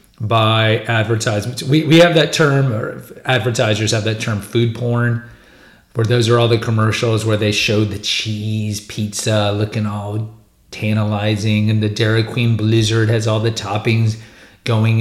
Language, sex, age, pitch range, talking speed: English, male, 30-49, 105-120 Hz, 155 wpm